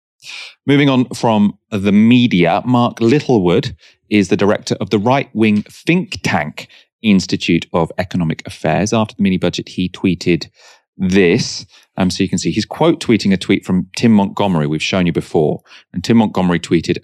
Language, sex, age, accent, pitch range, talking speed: English, male, 30-49, British, 85-110 Hz, 160 wpm